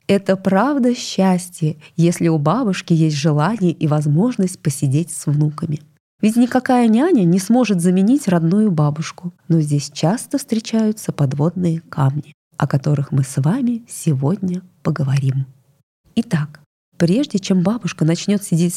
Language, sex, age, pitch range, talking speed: Russian, female, 20-39, 155-215 Hz, 130 wpm